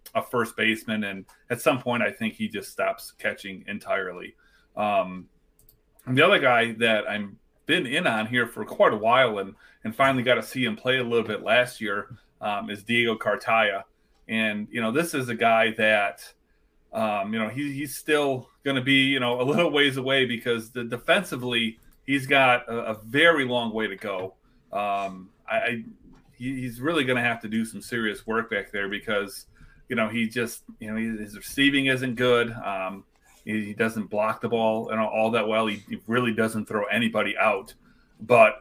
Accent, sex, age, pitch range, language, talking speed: American, male, 30-49, 110-130 Hz, English, 200 wpm